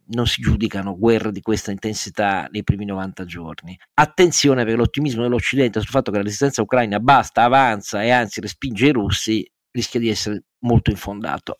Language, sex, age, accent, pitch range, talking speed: Italian, male, 50-69, native, 105-130 Hz, 170 wpm